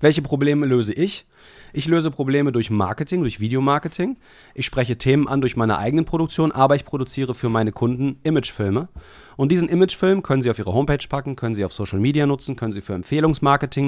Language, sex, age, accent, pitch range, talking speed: German, male, 40-59, German, 105-140 Hz, 195 wpm